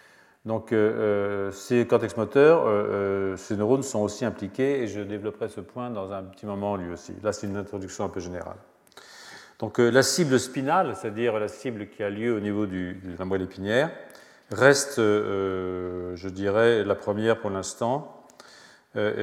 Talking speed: 170 wpm